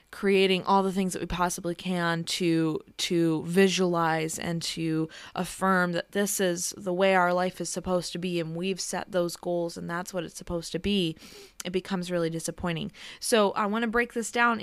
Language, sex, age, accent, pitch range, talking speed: English, female, 20-39, American, 170-200 Hz, 195 wpm